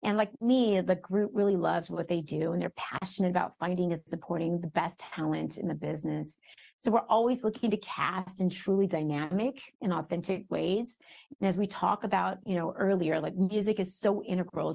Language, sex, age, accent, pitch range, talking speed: English, female, 30-49, American, 170-205 Hz, 195 wpm